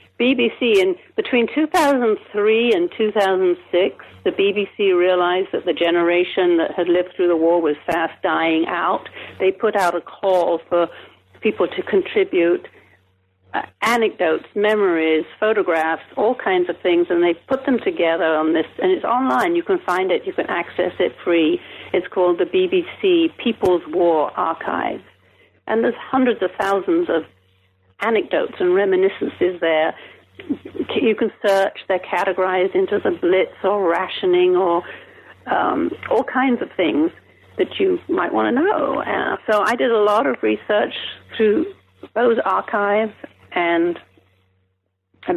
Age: 60-79